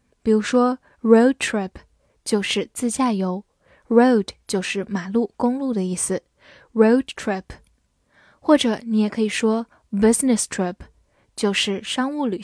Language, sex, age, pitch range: Chinese, female, 10-29, 200-245 Hz